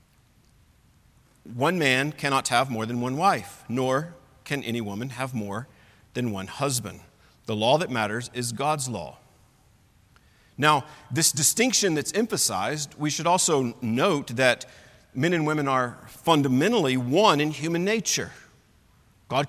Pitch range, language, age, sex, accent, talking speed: 120-165 Hz, English, 50-69, male, American, 135 wpm